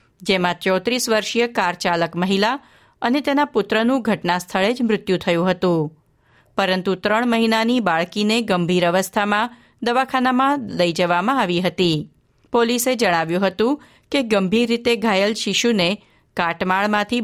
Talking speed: 120 wpm